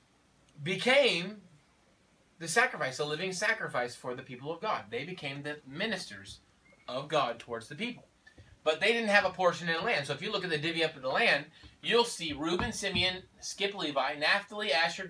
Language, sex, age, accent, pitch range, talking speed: English, male, 20-39, American, 160-235 Hz, 190 wpm